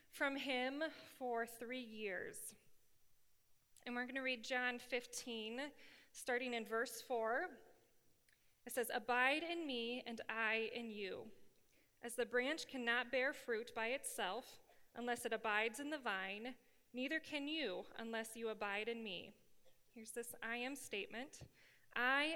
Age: 20-39